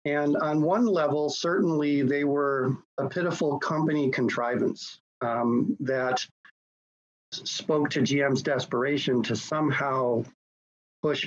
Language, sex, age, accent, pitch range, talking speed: English, male, 40-59, American, 125-155 Hz, 105 wpm